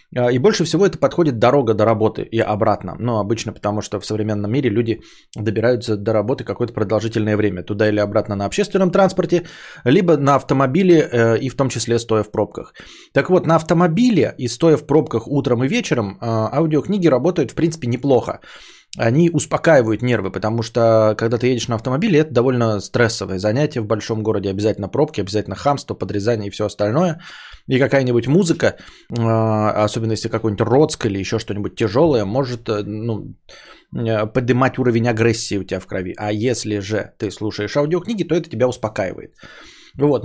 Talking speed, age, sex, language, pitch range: 165 wpm, 20-39, male, Bulgarian, 110-145 Hz